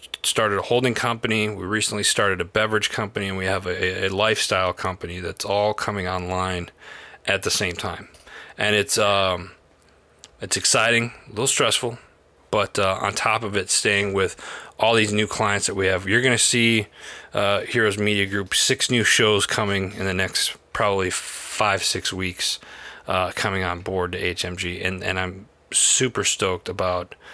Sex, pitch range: male, 90-105 Hz